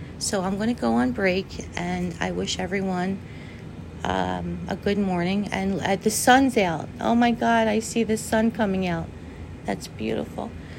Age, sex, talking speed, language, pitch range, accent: 40-59, female, 170 wpm, English, 150-195 Hz, American